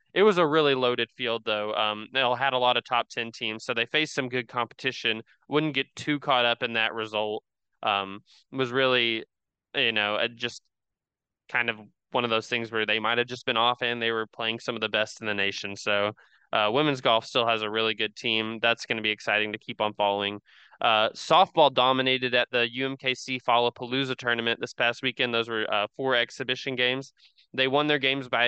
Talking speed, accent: 215 wpm, American